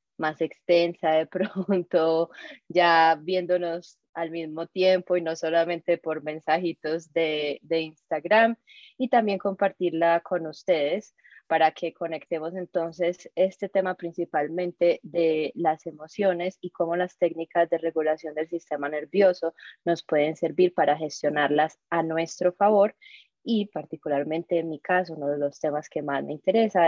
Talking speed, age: 140 wpm, 20-39